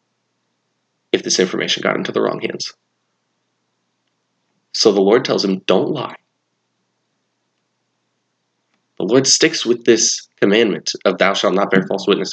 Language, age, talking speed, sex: English, 30-49, 135 wpm, male